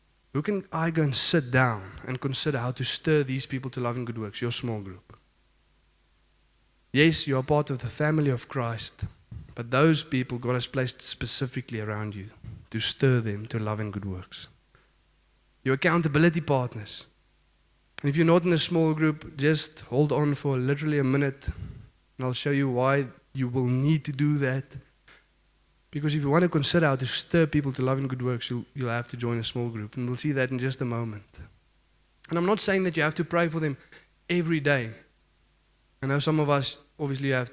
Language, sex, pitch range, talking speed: English, male, 120-145 Hz, 205 wpm